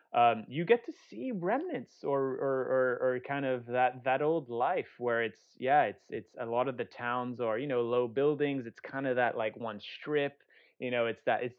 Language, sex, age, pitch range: English, male, 20-39, 110-135 Hz